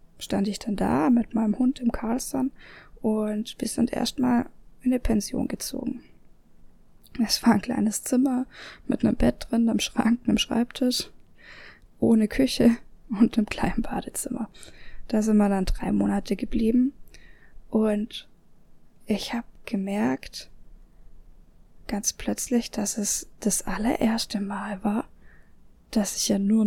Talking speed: 135 wpm